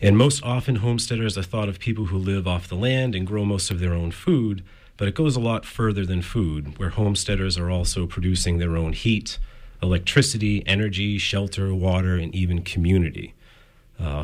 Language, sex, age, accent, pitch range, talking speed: English, male, 40-59, American, 90-110 Hz, 185 wpm